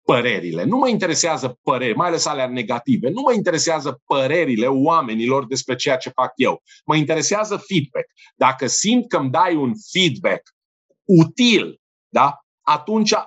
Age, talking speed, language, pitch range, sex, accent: 50-69, 145 wpm, Romanian, 135-195 Hz, male, native